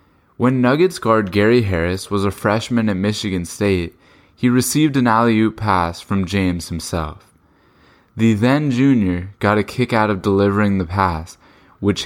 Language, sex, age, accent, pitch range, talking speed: English, male, 10-29, American, 95-115 Hz, 150 wpm